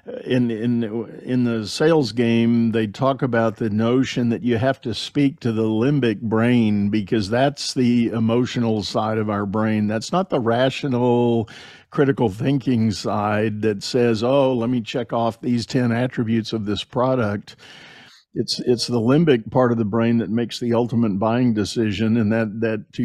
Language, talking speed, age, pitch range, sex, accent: English, 170 wpm, 50-69, 110-130 Hz, male, American